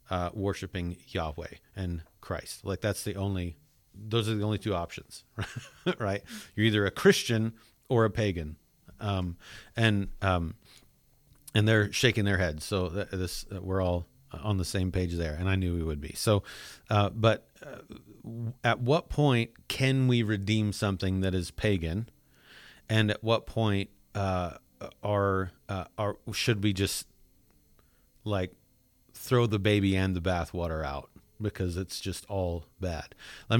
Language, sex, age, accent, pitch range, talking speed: English, male, 40-59, American, 90-110 Hz, 155 wpm